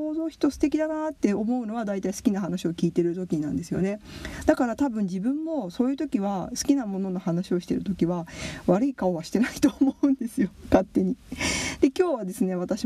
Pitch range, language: 185-285 Hz, Japanese